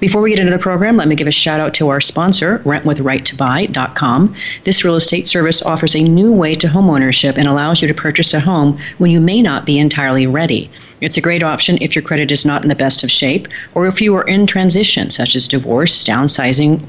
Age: 40-59